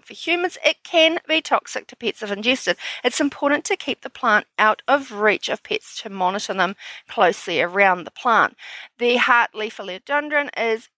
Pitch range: 210-295 Hz